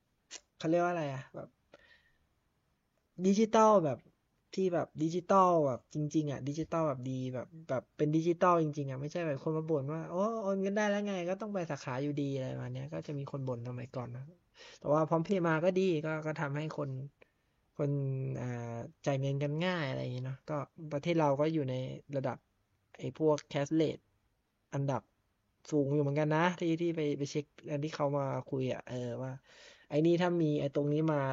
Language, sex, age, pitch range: Thai, male, 20-39, 135-160 Hz